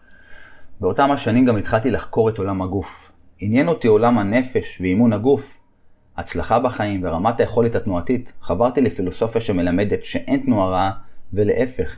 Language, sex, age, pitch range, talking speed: Hebrew, male, 30-49, 95-125 Hz, 130 wpm